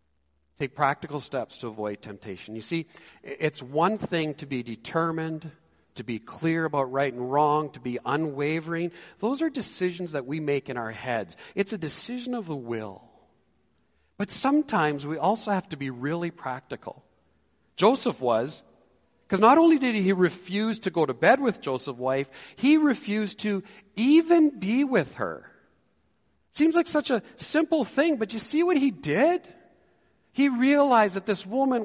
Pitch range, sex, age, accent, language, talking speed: 150-245 Hz, male, 40-59, American, English, 165 wpm